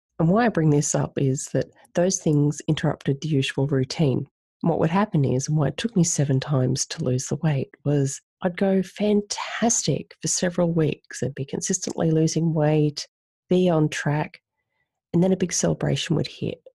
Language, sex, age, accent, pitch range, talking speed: English, female, 30-49, Australian, 135-170 Hz, 185 wpm